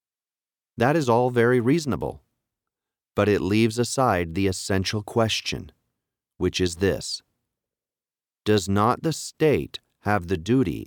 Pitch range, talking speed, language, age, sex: 90-120 Hz, 120 wpm, English, 40-59, male